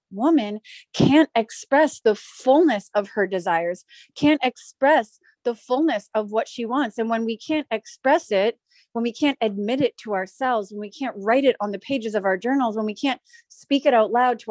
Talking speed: 200 wpm